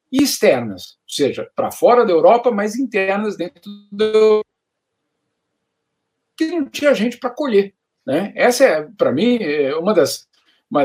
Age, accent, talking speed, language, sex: 50-69, Brazilian, 155 wpm, Portuguese, male